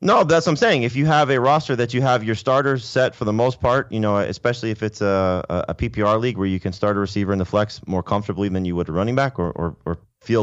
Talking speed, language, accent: 290 wpm, English, American